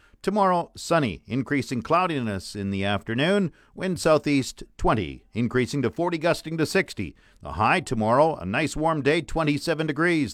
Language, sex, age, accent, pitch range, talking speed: English, male, 50-69, American, 120-160 Hz, 145 wpm